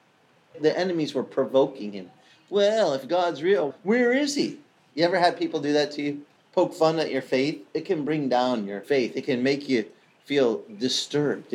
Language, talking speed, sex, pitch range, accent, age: English, 190 wpm, male, 140-190 Hz, American, 40-59